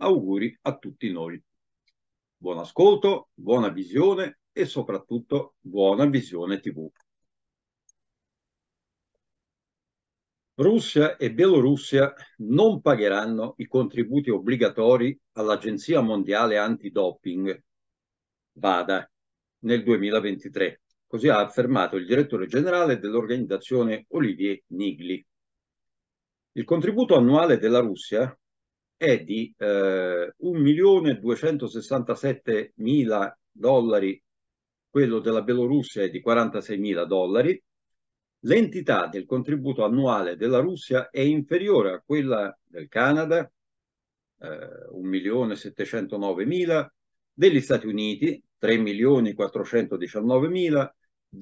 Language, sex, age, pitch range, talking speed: Italian, male, 50-69, 105-145 Hz, 85 wpm